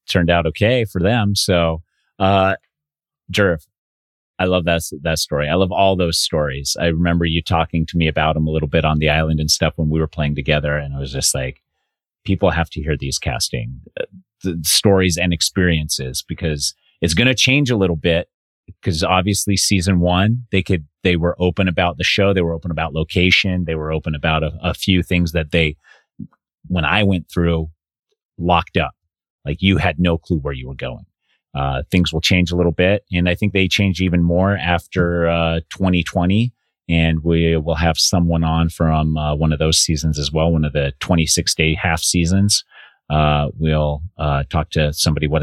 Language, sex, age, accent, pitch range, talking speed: English, male, 30-49, American, 80-95 Hz, 195 wpm